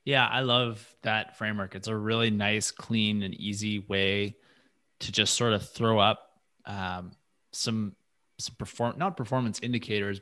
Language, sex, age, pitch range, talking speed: English, male, 20-39, 100-115 Hz, 155 wpm